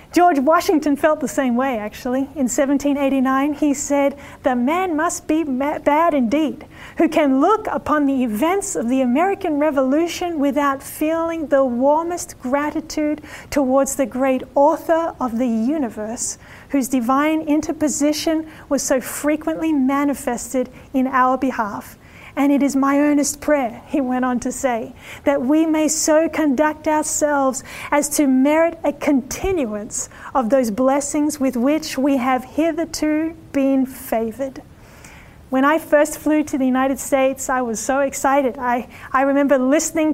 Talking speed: 145 wpm